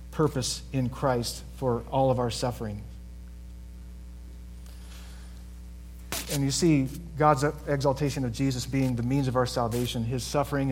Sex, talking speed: male, 130 wpm